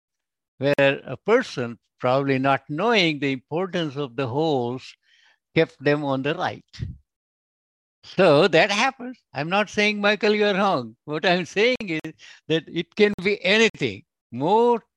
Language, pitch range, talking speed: English, 120-160 Hz, 140 wpm